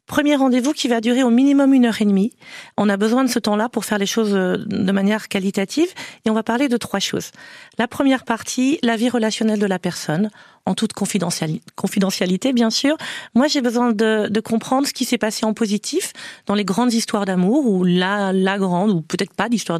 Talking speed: 210 wpm